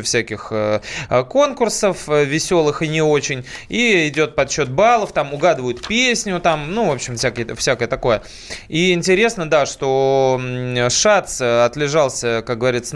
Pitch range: 125-175 Hz